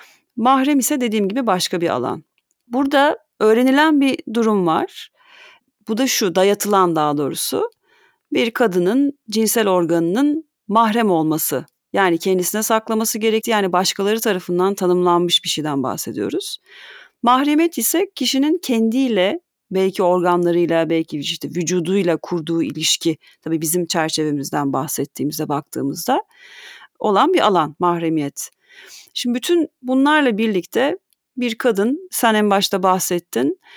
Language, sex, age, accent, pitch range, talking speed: Turkish, female, 40-59, native, 180-245 Hz, 115 wpm